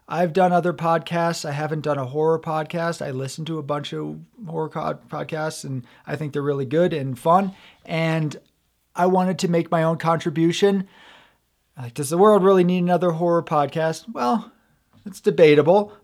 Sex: male